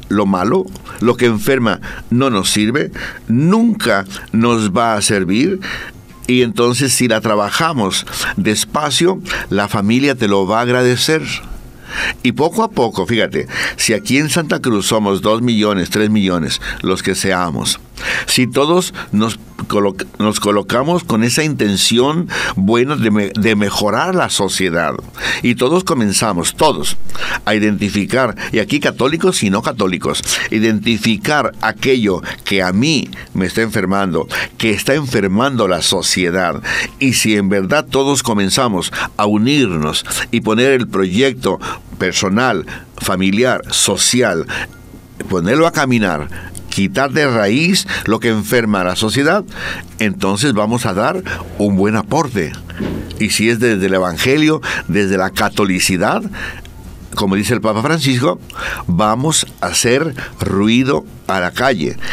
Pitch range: 100-125 Hz